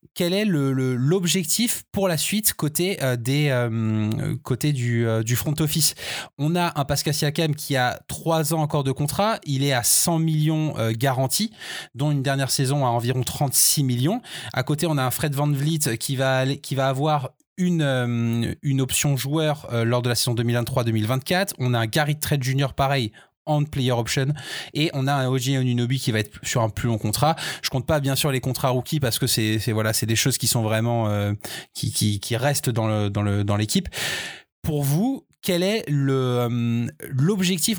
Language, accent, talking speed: French, French, 210 wpm